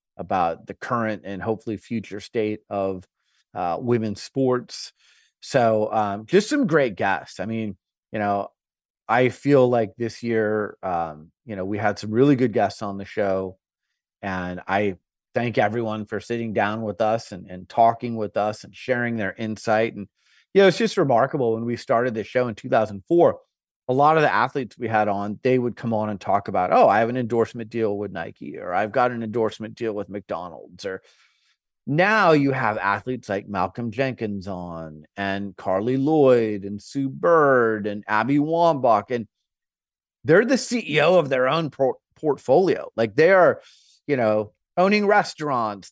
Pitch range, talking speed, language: 105-140 Hz, 175 wpm, English